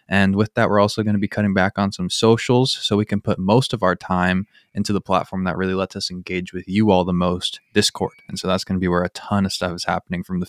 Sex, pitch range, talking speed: male, 95-110 Hz, 285 wpm